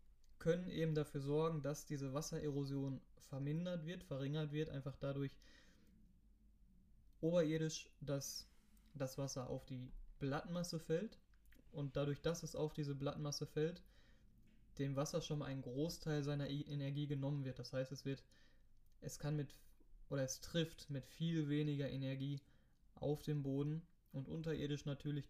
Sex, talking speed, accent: male, 140 wpm, German